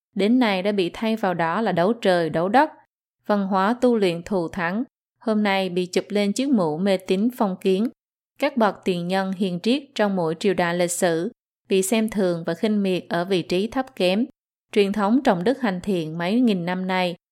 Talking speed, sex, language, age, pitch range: 215 wpm, female, Vietnamese, 20-39, 175-220 Hz